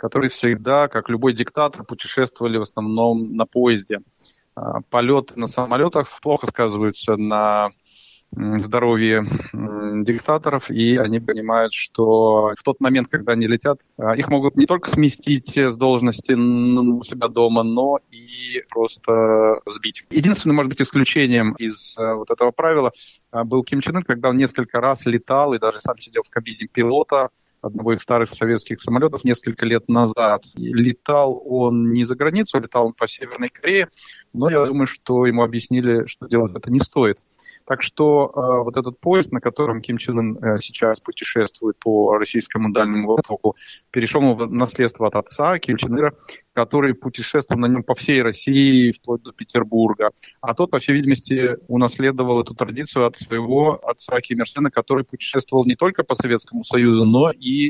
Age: 30-49